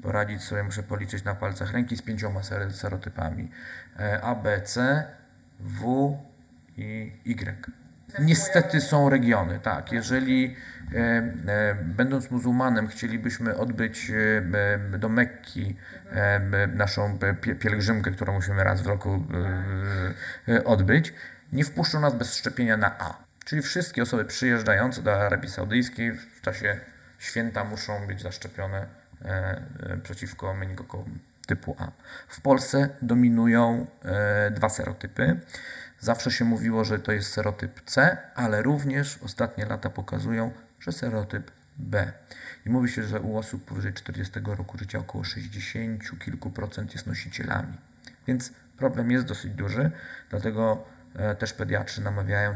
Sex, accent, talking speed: male, native, 130 wpm